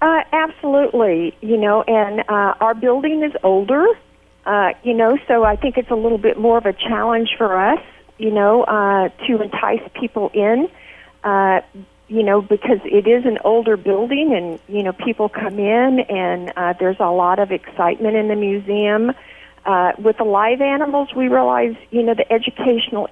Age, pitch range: 50-69, 190-225 Hz